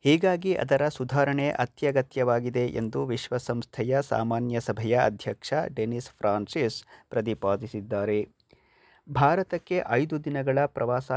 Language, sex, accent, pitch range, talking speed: Kannada, male, native, 115-140 Hz, 85 wpm